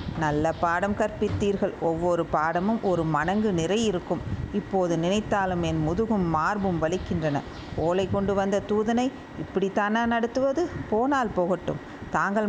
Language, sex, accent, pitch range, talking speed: Tamil, female, native, 170-215 Hz, 115 wpm